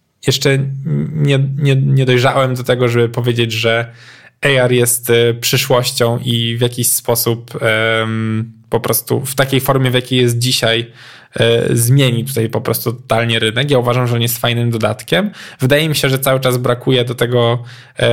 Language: Polish